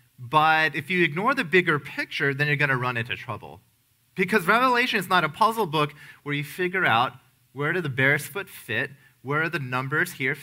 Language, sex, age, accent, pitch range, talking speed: English, male, 30-49, American, 135-175 Hz, 200 wpm